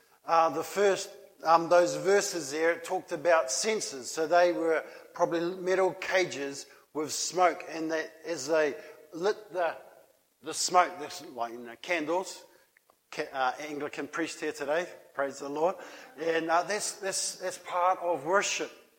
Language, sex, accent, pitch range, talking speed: English, male, Australian, 165-195 Hz, 140 wpm